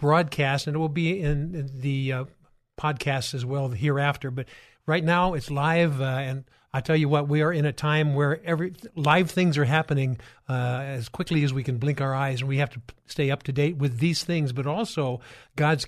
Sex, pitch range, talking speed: male, 135-155 Hz, 215 wpm